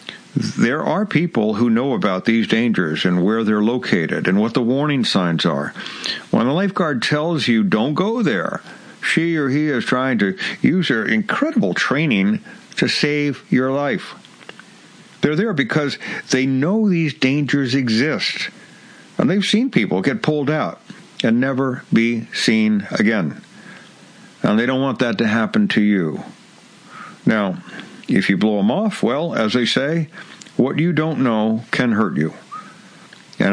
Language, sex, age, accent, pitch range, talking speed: English, male, 60-79, American, 120-180 Hz, 155 wpm